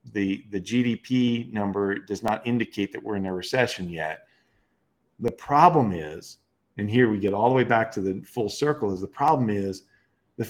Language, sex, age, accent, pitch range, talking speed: English, male, 40-59, American, 100-125 Hz, 190 wpm